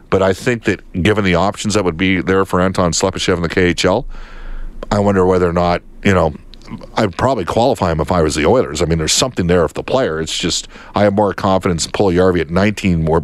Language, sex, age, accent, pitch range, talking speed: English, male, 50-69, American, 90-110 Hz, 235 wpm